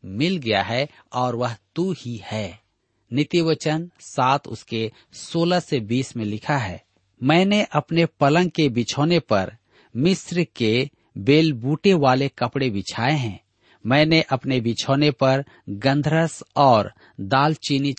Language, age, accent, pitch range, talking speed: Hindi, 50-69, native, 110-155 Hz, 125 wpm